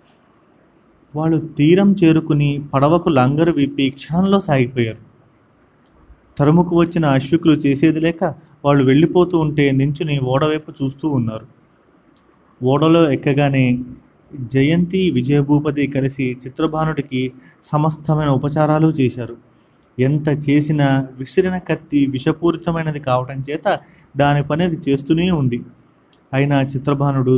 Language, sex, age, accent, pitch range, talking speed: Telugu, male, 30-49, native, 130-160 Hz, 90 wpm